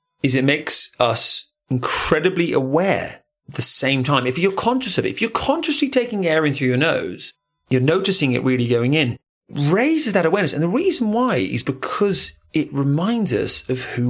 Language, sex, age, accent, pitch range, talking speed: English, male, 30-49, British, 120-175 Hz, 190 wpm